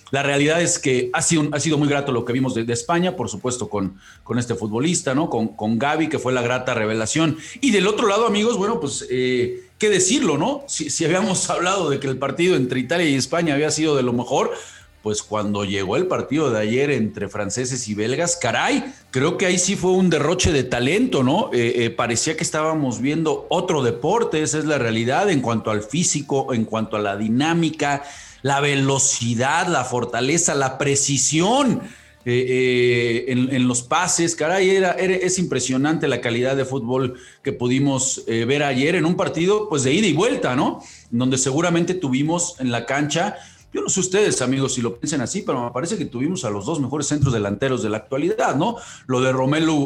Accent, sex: Mexican, male